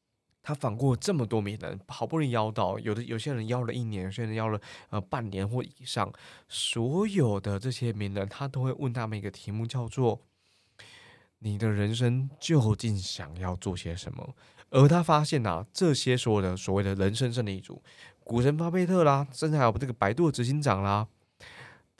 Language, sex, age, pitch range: Chinese, male, 20-39, 100-135 Hz